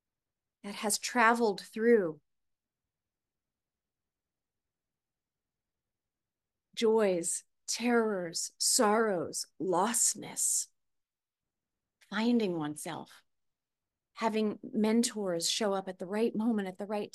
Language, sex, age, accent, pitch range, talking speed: English, female, 30-49, American, 205-280 Hz, 75 wpm